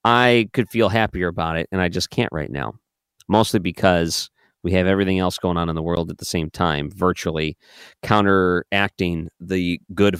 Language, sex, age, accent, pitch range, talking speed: English, male, 40-59, American, 85-100 Hz, 180 wpm